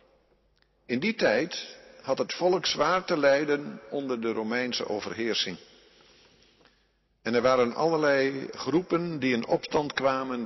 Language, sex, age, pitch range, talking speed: Dutch, male, 50-69, 130-175 Hz, 125 wpm